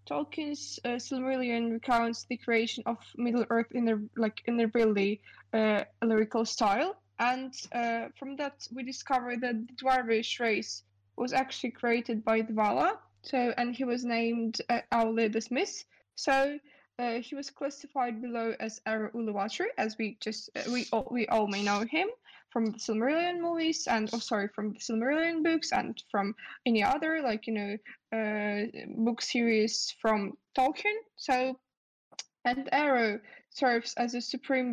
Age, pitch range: 10-29, 225-265 Hz